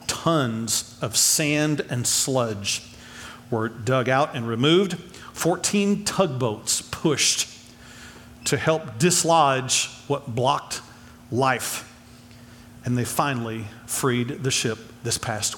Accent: American